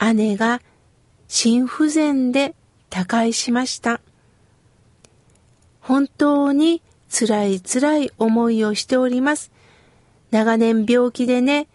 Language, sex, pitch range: Japanese, female, 220-295 Hz